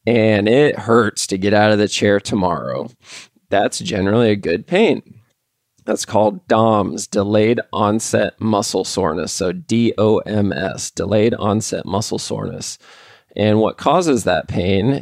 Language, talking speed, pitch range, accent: English, 130 wpm, 95-110 Hz, American